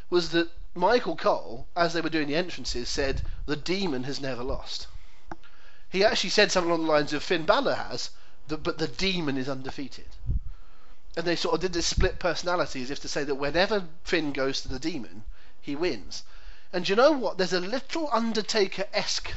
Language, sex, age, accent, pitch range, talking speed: English, male, 40-59, British, 140-195 Hz, 190 wpm